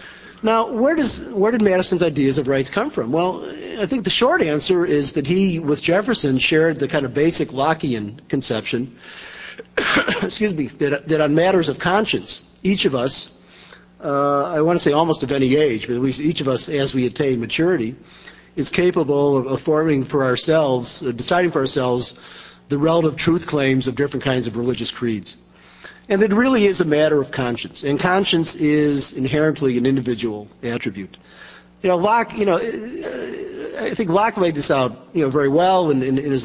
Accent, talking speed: American, 185 wpm